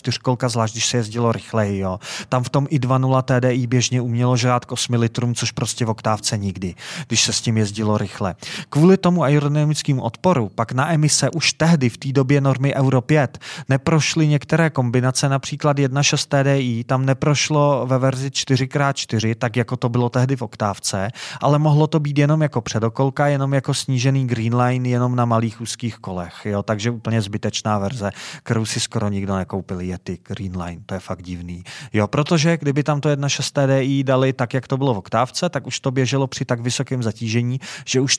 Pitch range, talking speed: 115-140 Hz, 185 wpm